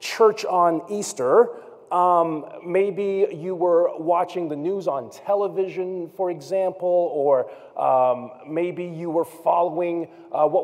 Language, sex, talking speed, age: English, male, 125 wpm, 30-49